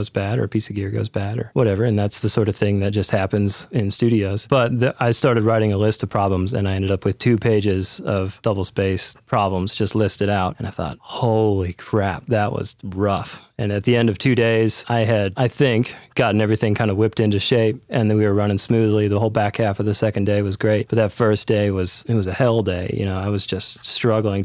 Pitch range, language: 100-115 Hz, English